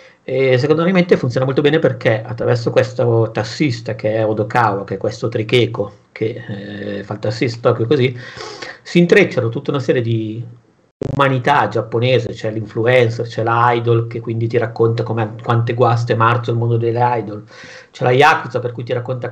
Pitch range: 115-130 Hz